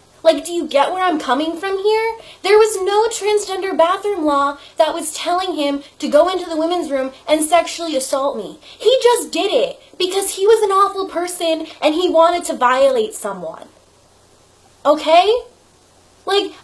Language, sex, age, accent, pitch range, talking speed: English, female, 10-29, American, 280-370 Hz, 170 wpm